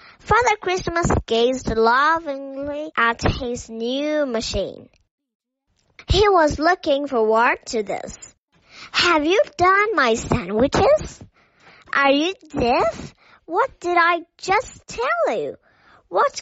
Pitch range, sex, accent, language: 240-360 Hz, male, American, Chinese